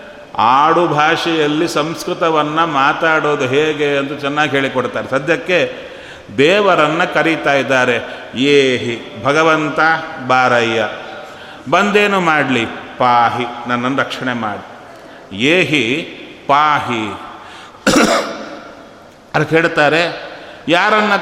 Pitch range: 130-165 Hz